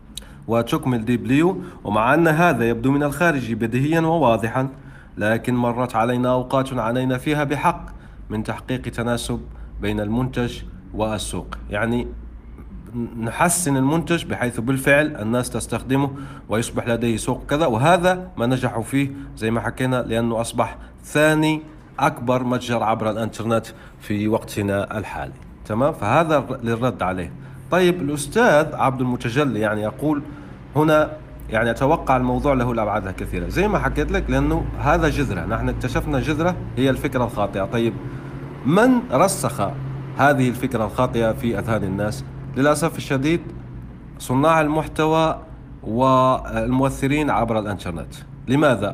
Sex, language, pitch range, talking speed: male, Arabic, 115-145 Hz, 120 wpm